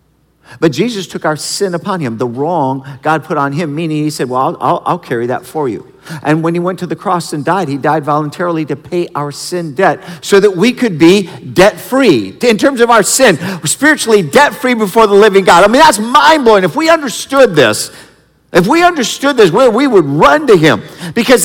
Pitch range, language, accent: 165-250 Hz, English, American